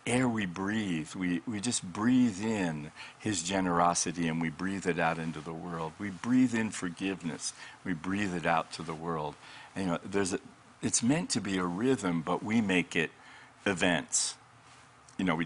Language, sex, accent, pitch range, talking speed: English, male, American, 80-100 Hz, 180 wpm